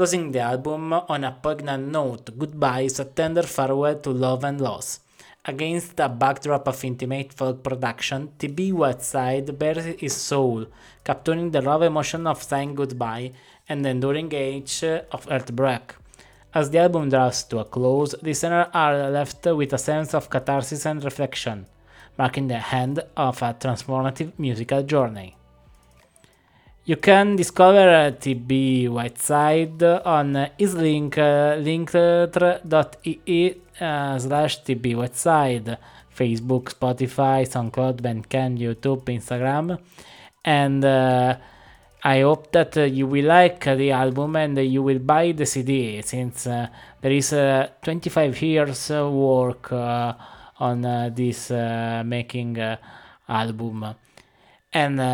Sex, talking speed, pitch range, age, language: male, 125 wpm, 125-155 Hz, 20-39, English